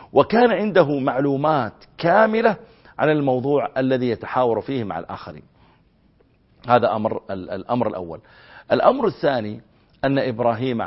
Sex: male